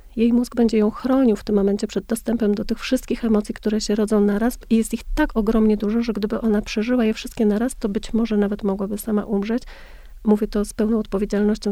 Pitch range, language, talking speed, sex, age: 210-230 Hz, Polish, 220 wpm, female, 40-59